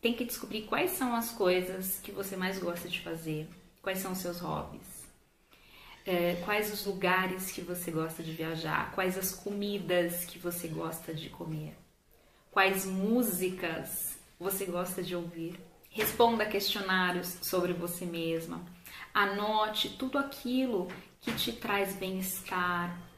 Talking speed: 135 wpm